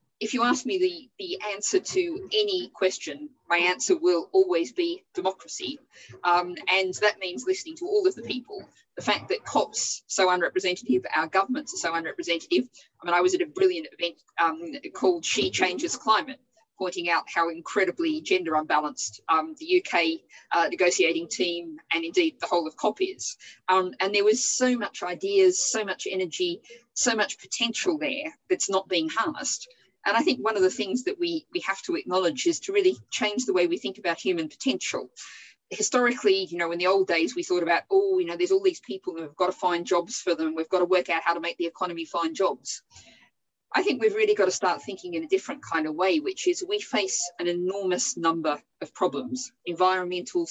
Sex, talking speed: female, 205 wpm